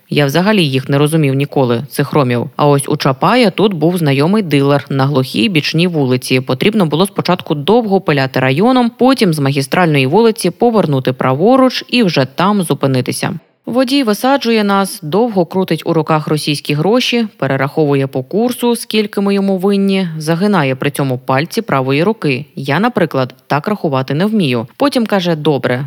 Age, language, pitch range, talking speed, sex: 20-39, Ukrainian, 140-210 Hz, 155 wpm, female